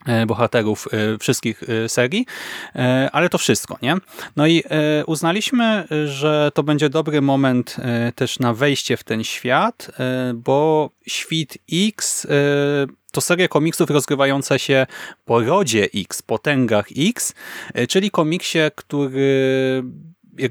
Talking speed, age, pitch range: 115 wpm, 30-49, 125-160 Hz